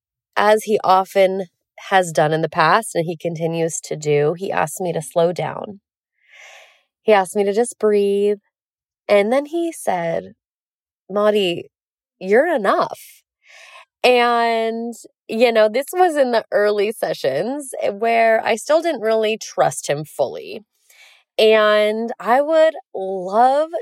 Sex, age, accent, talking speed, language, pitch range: female, 20-39, American, 135 wpm, English, 175-235 Hz